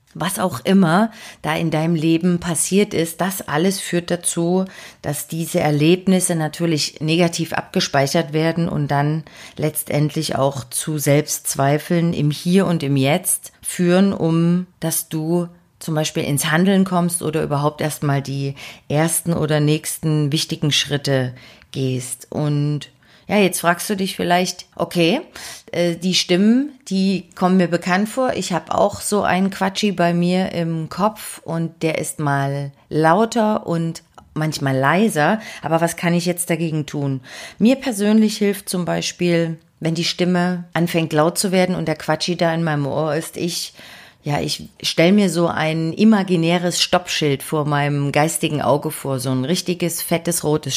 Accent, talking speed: German, 150 wpm